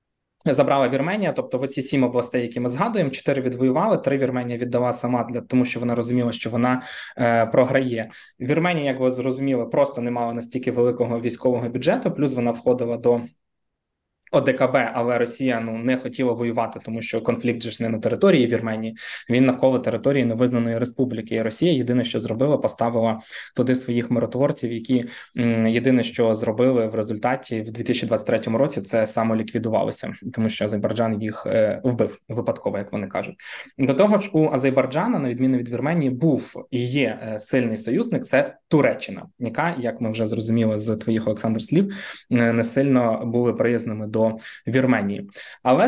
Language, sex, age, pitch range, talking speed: Ukrainian, male, 20-39, 115-130 Hz, 150 wpm